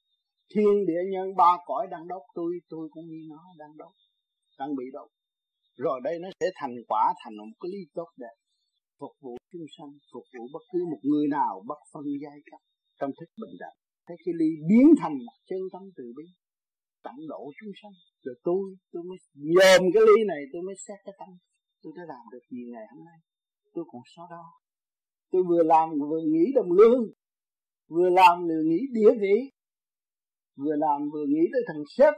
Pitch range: 165-250 Hz